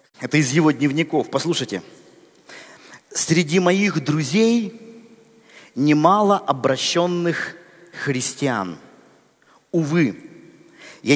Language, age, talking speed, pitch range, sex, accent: Russian, 50-69, 70 wpm, 125-160 Hz, male, native